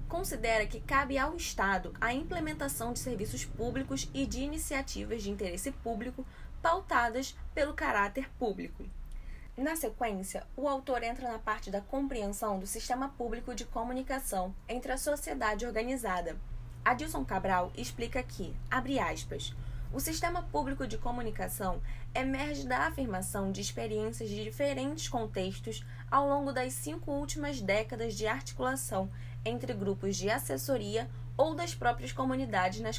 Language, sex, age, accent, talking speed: Portuguese, female, 10-29, Brazilian, 135 wpm